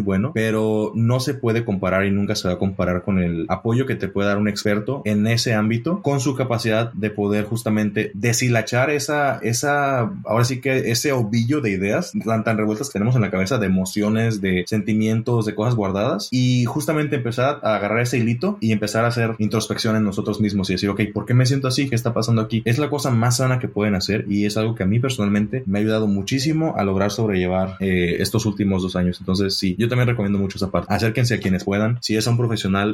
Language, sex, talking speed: Spanish, male, 230 wpm